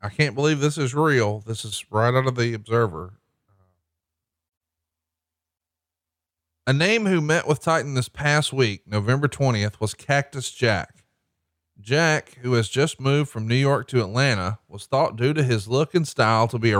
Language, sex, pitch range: English, male, 110-145 Hz